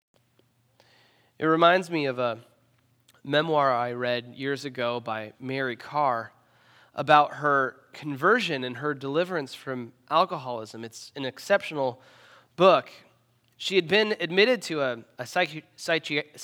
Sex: male